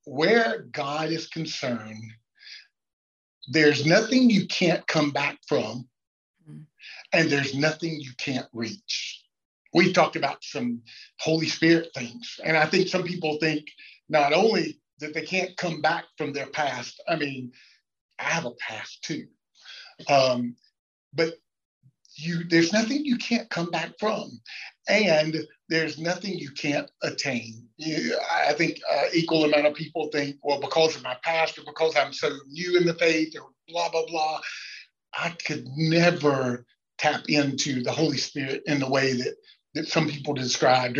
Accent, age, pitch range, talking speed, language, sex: American, 50-69, 130-165 Hz, 155 wpm, English, male